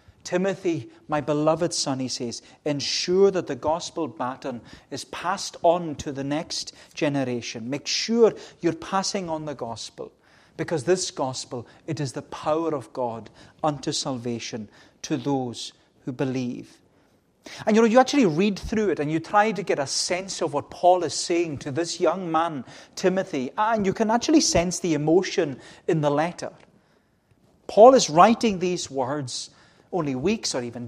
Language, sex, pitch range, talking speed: English, male, 135-180 Hz, 165 wpm